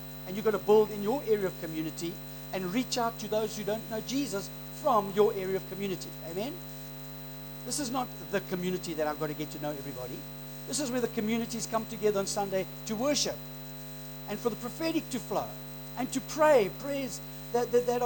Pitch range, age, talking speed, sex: 185-240 Hz, 60-79, 205 wpm, male